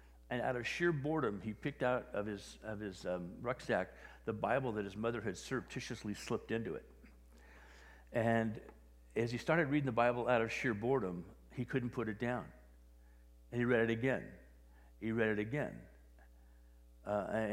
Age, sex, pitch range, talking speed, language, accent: 50-69, male, 100-145 Hz, 170 wpm, English, American